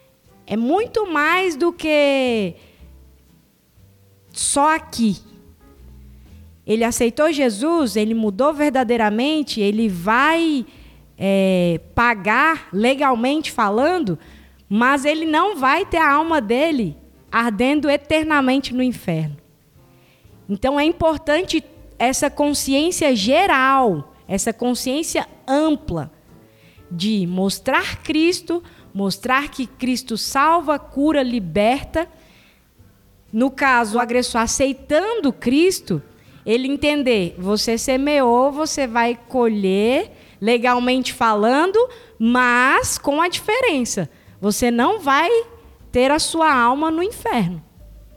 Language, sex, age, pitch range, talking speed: Portuguese, female, 20-39, 220-310 Hz, 95 wpm